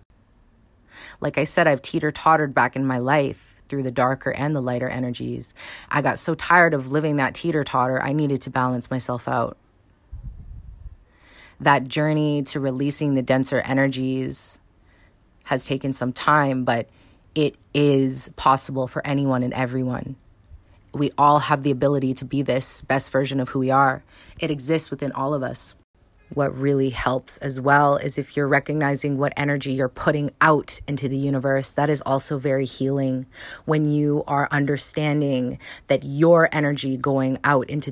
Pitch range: 130-145 Hz